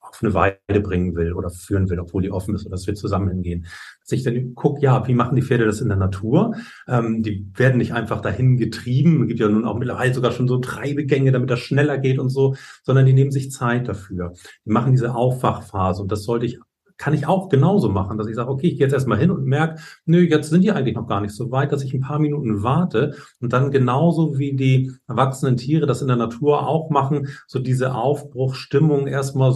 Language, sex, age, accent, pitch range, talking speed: German, male, 40-59, German, 110-140 Hz, 235 wpm